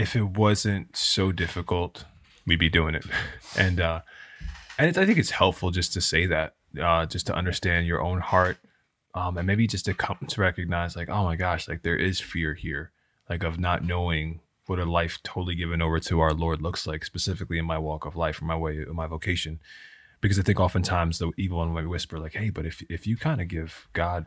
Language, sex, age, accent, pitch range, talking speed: English, male, 20-39, American, 85-95 Hz, 225 wpm